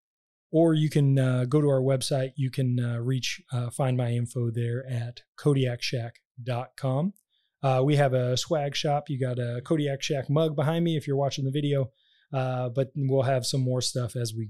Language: English